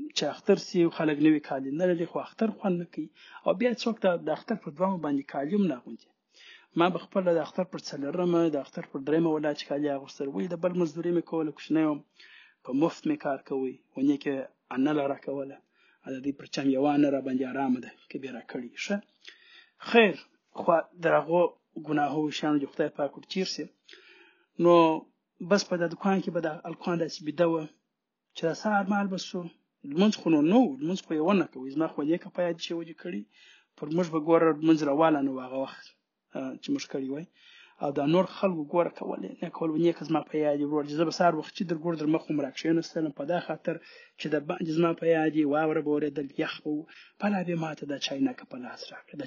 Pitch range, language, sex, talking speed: 150-190 Hz, Urdu, male, 195 wpm